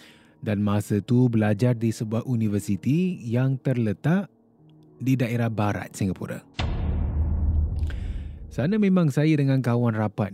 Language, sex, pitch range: Malay, male, 100-140 Hz